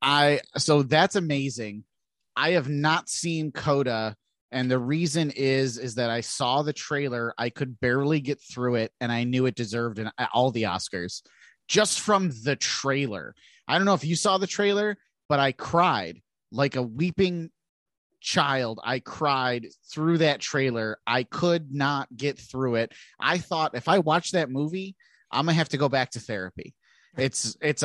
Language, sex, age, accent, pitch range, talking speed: English, male, 30-49, American, 125-155 Hz, 170 wpm